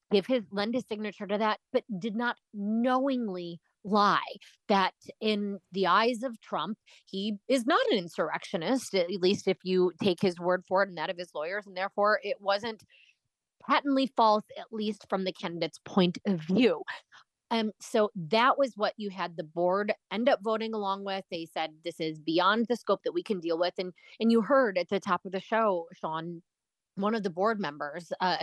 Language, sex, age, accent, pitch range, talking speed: English, female, 30-49, American, 175-215 Hz, 200 wpm